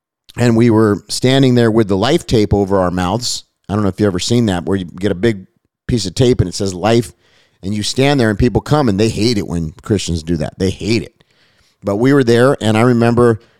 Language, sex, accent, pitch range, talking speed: English, male, American, 105-135 Hz, 250 wpm